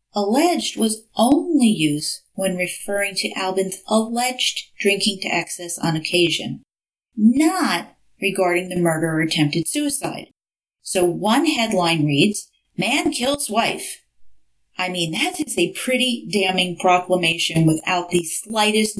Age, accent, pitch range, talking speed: 40-59, American, 165-210 Hz, 125 wpm